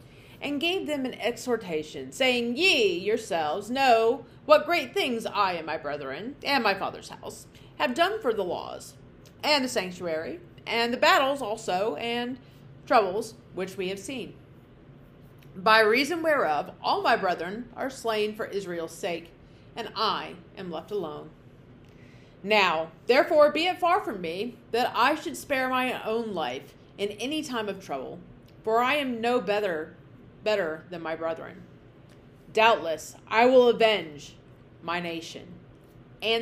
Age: 40-59